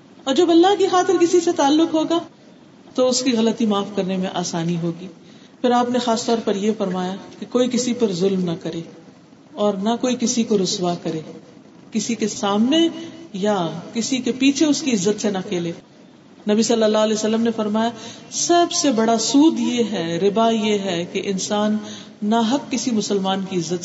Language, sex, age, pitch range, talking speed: Urdu, female, 40-59, 195-260 Hz, 195 wpm